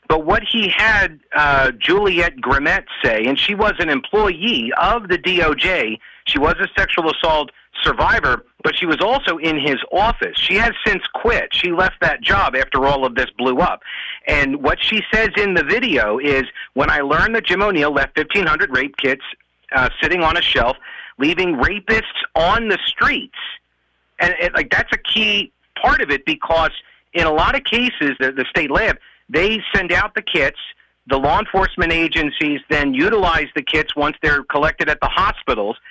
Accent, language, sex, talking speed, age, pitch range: American, English, male, 180 wpm, 40-59, 150-205 Hz